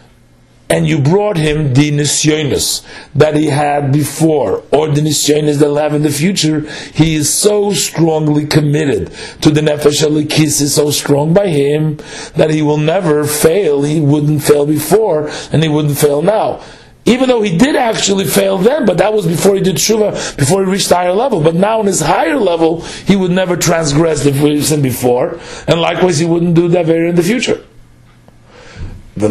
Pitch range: 150-195 Hz